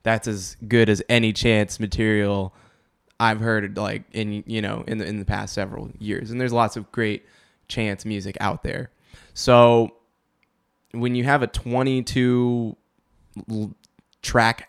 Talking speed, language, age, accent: 145 wpm, English, 20-39, American